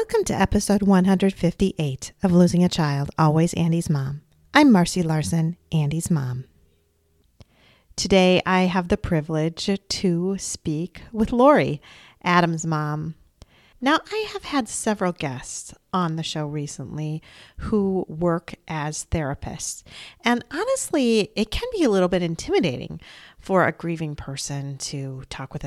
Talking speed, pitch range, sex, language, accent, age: 135 wpm, 150-200 Hz, female, English, American, 40-59